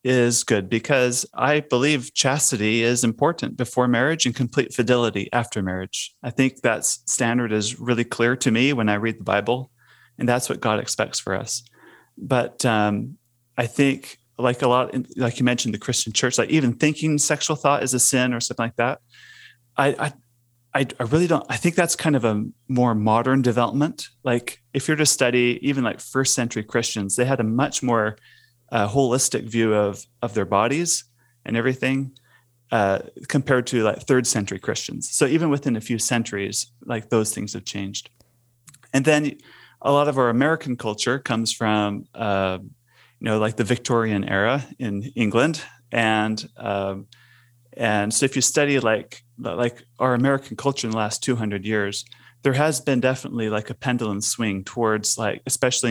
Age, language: 30-49, English